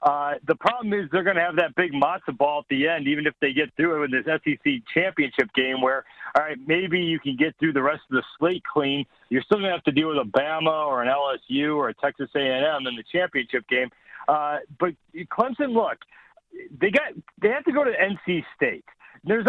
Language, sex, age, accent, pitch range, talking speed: English, male, 40-59, American, 140-185 Hz, 230 wpm